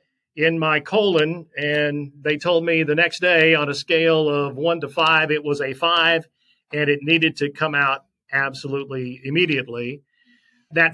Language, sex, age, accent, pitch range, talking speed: English, male, 40-59, American, 140-165 Hz, 165 wpm